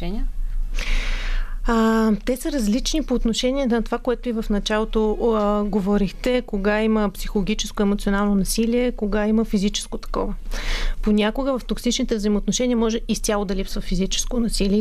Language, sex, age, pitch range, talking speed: Bulgarian, female, 30-49, 205-230 Hz, 140 wpm